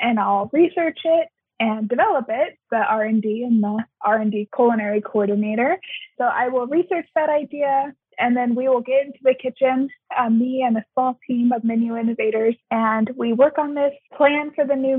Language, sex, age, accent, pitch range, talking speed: English, female, 20-39, American, 220-270 Hz, 185 wpm